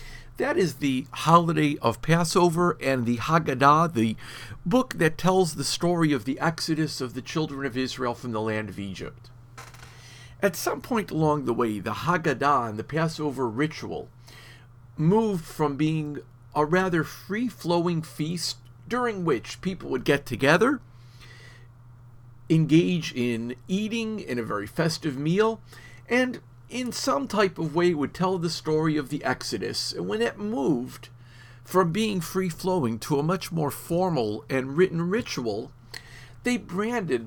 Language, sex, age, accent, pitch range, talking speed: English, male, 50-69, American, 120-170 Hz, 145 wpm